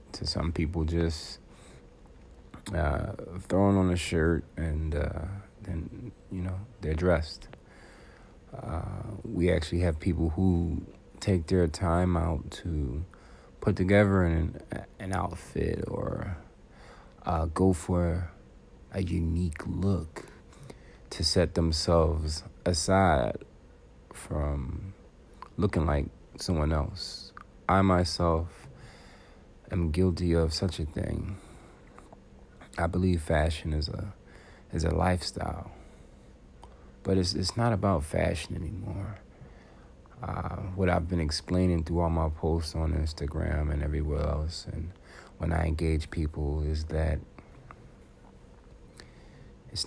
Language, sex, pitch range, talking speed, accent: English, male, 75-95 Hz, 110 wpm, American